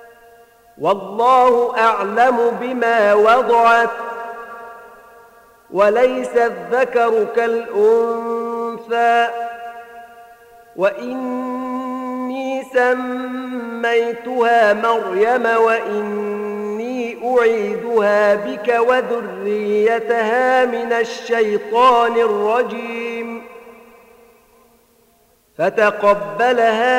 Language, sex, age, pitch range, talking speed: Arabic, male, 50-69, 225-235 Hz, 40 wpm